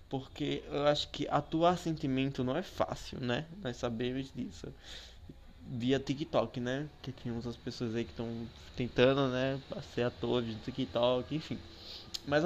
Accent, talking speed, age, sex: Brazilian, 150 wpm, 20-39, male